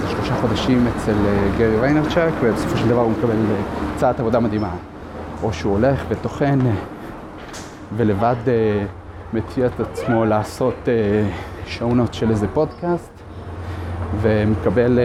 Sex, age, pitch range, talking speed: male, 30-49, 100-125 Hz, 110 wpm